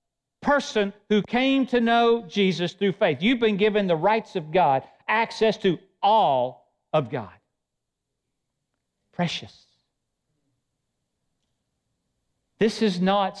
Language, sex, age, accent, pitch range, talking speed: English, male, 40-59, American, 175-235 Hz, 105 wpm